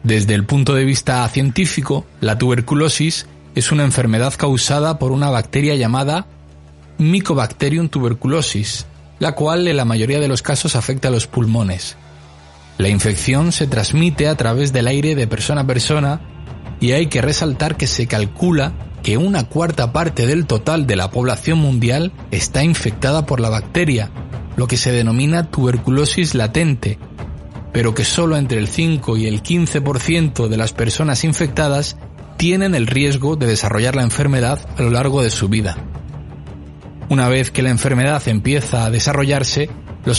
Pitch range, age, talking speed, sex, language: 115-150 Hz, 30-49, 155 wpm, male, Spanish